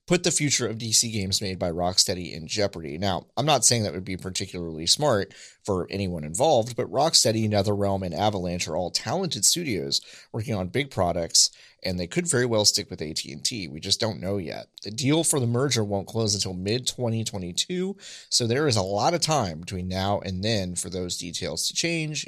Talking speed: 200 wpm